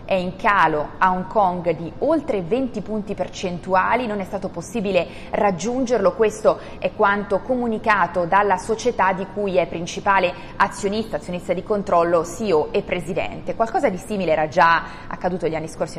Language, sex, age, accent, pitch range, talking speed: Italian, female, 30-49, native, 165-205 Hz, 160 wpm